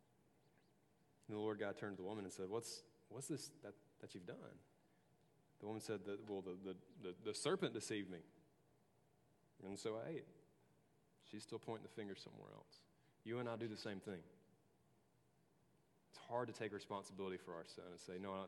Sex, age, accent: male, 30-49, American